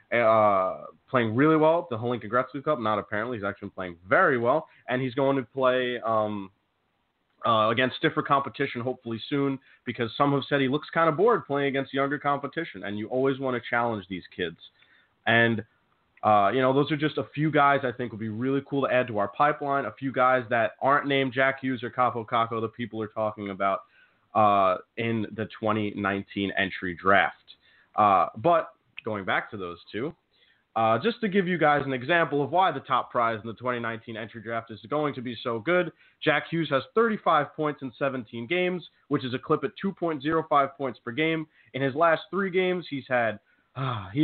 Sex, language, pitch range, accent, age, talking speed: male, English, 115-150 Hz, American, 30-49, 205 wpm